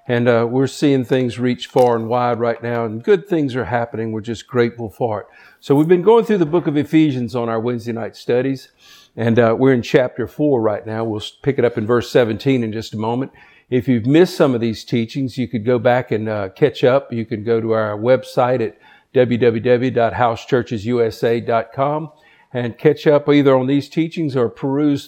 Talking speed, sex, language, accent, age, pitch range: 205 wpm, male, English, American, 50-69, 115-135 Hz